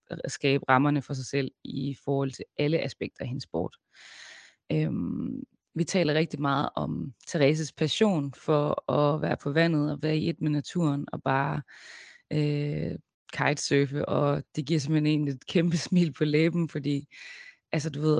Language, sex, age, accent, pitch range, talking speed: Danish, female, 20-39, native, 145-165 Hz, 170 wpm